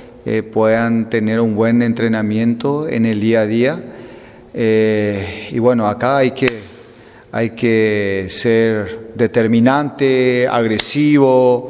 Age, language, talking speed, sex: 30-49, Portuguese, 115 wpm, male